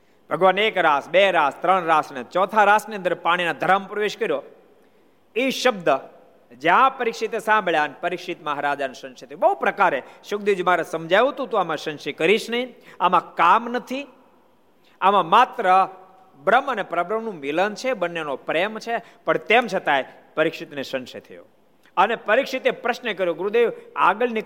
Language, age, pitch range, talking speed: Gujarati, 50-69, 165-240 Hz, 90 wpm